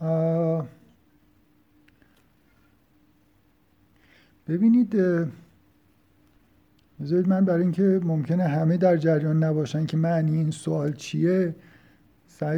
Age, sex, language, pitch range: 50-69, male, Persian, 150-170 Hz